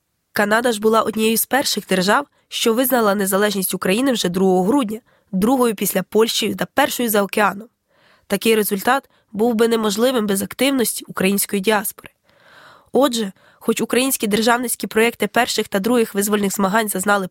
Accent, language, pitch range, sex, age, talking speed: native, Ukrainian, 205-245 Hz, female, 20-39, 140 wpm